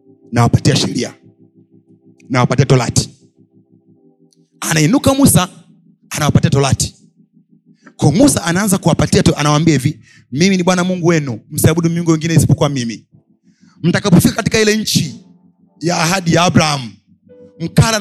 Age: 30-49